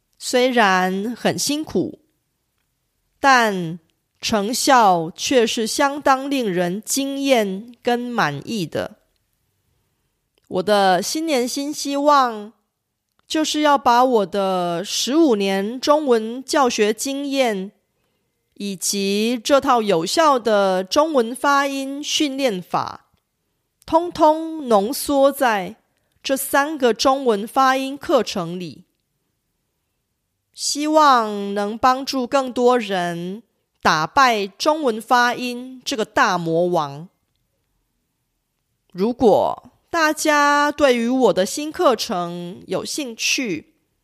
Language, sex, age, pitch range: Korean, female, 30-49, 190-275 Hz